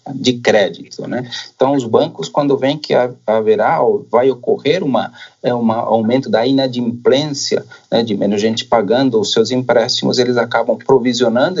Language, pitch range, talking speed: Portuguese, 120-150 Hz, 155 wpm